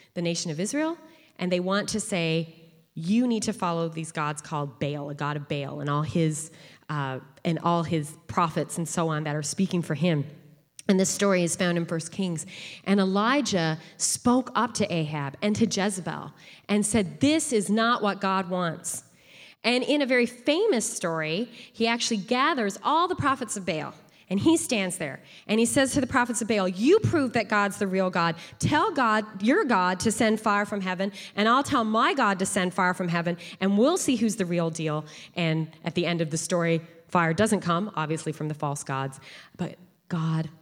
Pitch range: 160-210 Hz